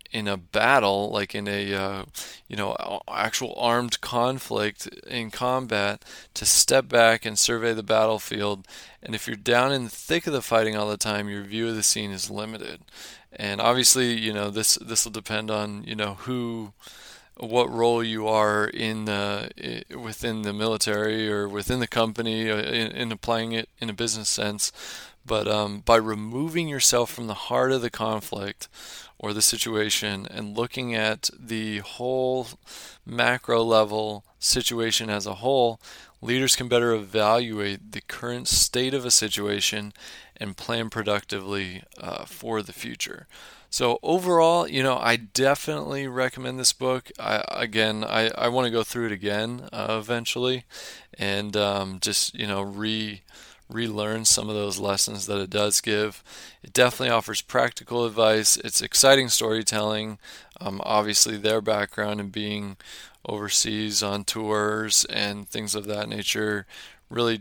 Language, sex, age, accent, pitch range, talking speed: English, male, 20-39, American, 105-115 Hz, 155 wpm